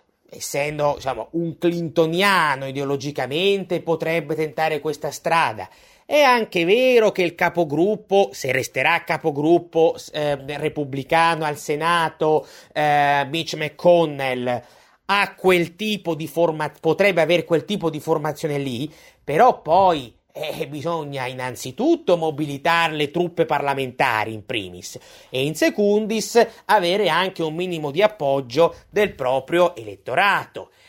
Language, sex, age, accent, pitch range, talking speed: Italian, male, 30-49, native, 145-180 Hz, 105 wpm